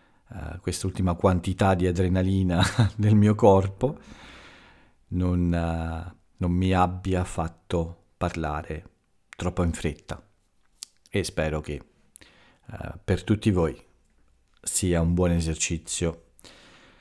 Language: Italian